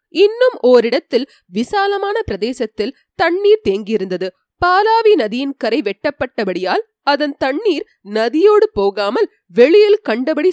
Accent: native